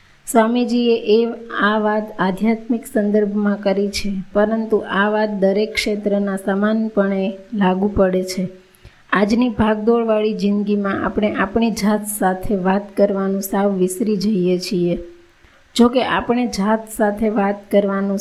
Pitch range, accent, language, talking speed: 195-220 Hz, native, Gujarati, 120 wpm